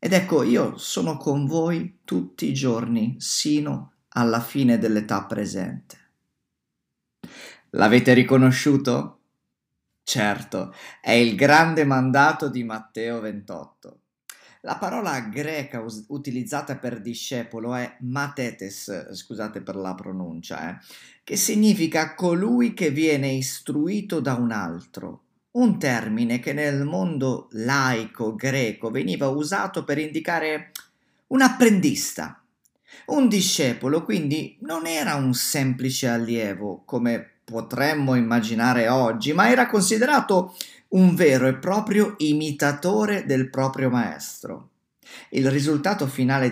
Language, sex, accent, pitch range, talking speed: Italian, male, native, 120-175 Hz, 110 wpm